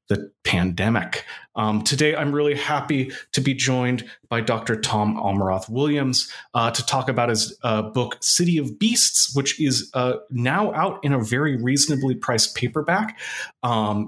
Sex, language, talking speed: male, English, 160 wpm